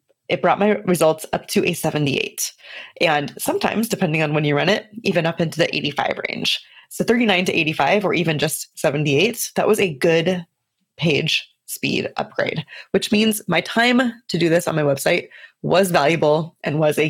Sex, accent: female, American